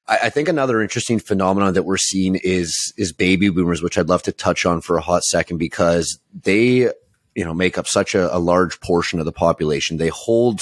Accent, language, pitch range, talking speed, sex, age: American, English, 85-100 Hz, 215 wpm, male, 30-49